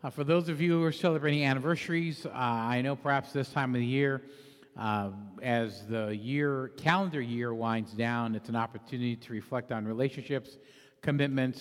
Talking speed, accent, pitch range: 175 wpm, American, 115-135 Hz